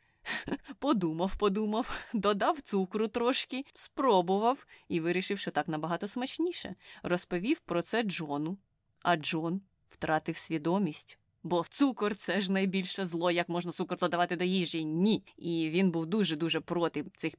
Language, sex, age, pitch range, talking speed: Ukrainian, female, 20-39, 170-210 Hz, 130 wpm